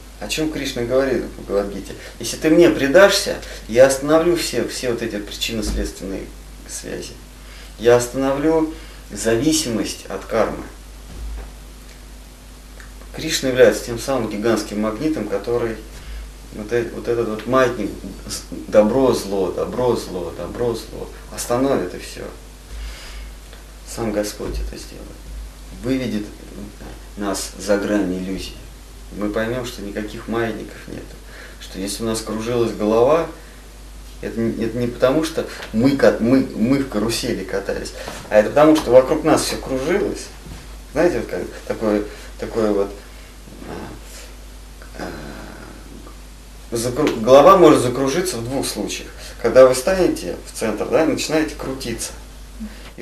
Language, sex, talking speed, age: Russian, male, 120 wpm, 30-49